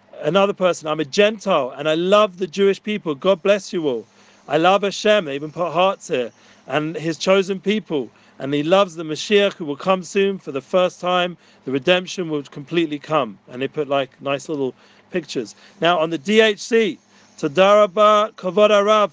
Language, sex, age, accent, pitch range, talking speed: English, male, 40-59, British, 165-200 Hz, 180 wpm